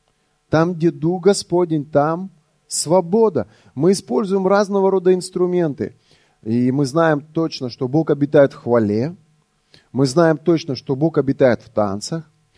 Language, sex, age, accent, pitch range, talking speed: Russian, male, 30-49, native, 145-190 Hz, 135 wpm